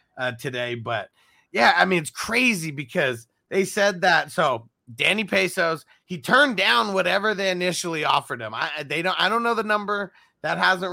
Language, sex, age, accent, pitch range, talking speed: English, male, 30-49, American, 145-190 Hz, 180 wpm